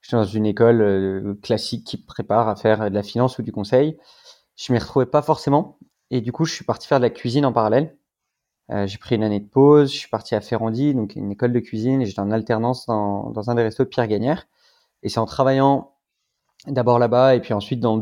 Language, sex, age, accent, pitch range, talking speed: French, male, 20-39, French, 110-135 Hz, 240 wpm